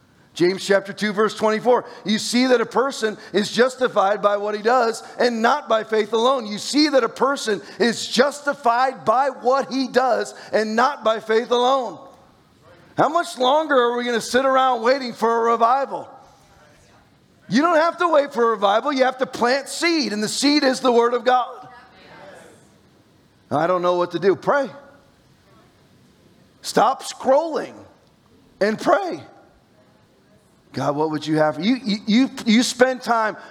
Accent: American